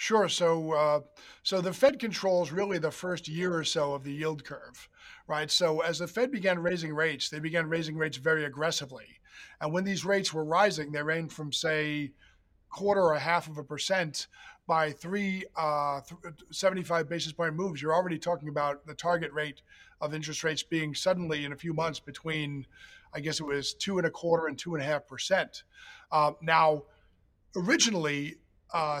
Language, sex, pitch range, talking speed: English, male, 150-175 Hz, 185 wpm